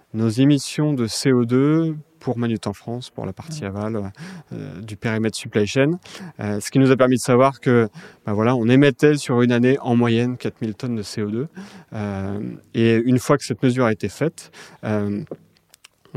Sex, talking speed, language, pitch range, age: male, 185 wpm, French, 110-140 Hz, 30-49